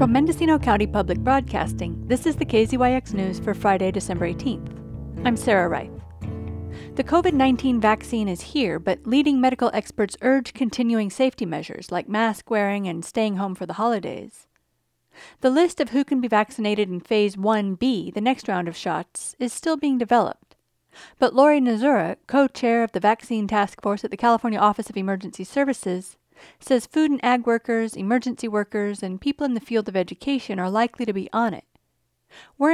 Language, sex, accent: English, female, American